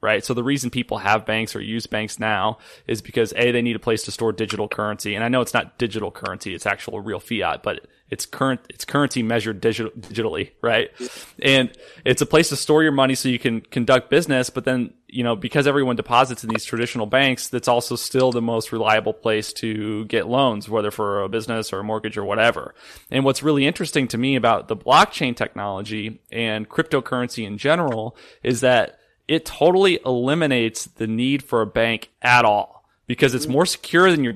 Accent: American